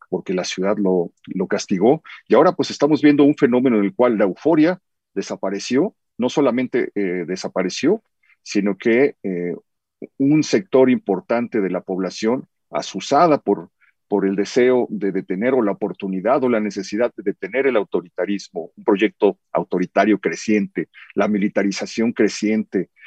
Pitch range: 95-125 Hz